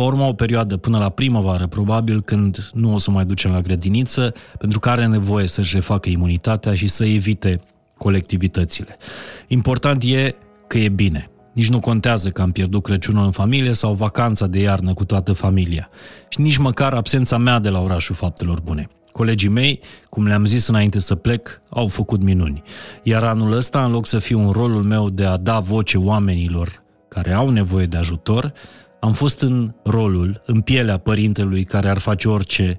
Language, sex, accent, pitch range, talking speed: Romanian, male, native, 95-115 Hz, 185 wpm